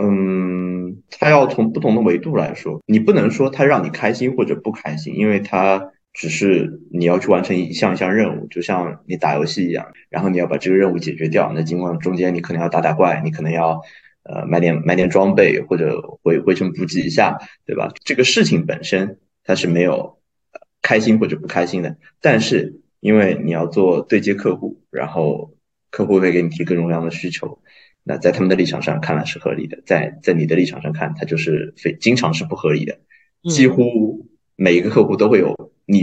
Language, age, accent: Chinese, 20-39, native